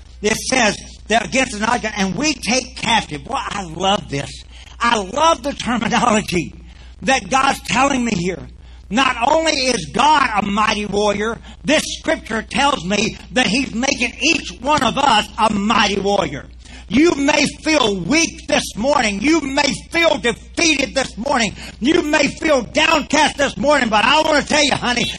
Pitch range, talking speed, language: 160-260 Hz, 160 wpm, English